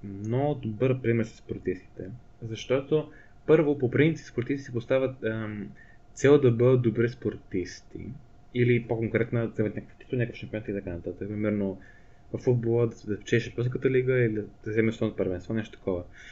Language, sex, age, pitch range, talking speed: Bulgarian, male, 20-39, 110-140 Hz, 160 wpm